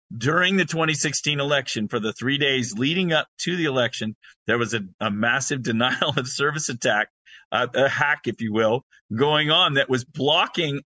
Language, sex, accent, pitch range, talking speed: English, male, American, 115-145 Hz, 180 wpm